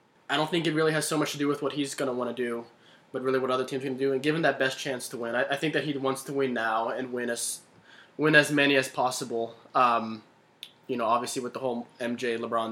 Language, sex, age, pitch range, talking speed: English, male, 20-39, 125-150 Hz, 280 wpm